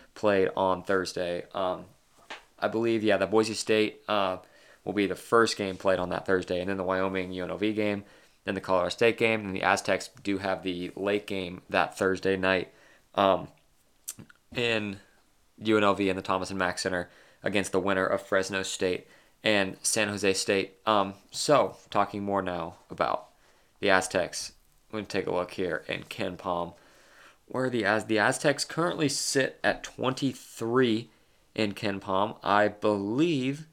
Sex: male